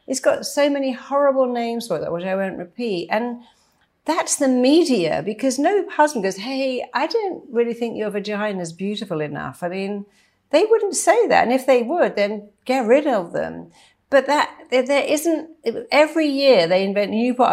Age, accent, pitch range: 50-69, British, 195-270 Hz